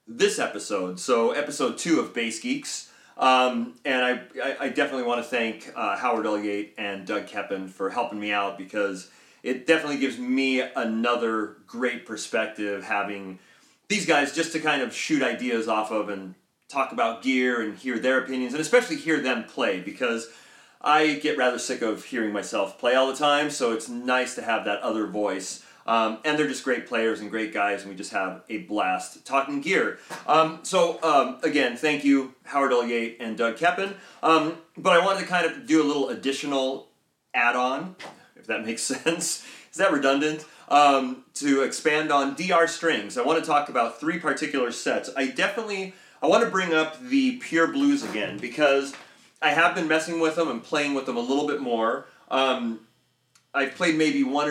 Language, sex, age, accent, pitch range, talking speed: English, male, 30-49, American, 115-155 Hz, 190 wpm